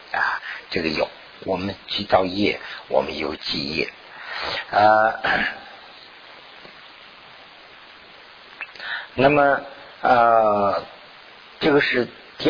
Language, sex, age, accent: Chinese, male, 50-69, native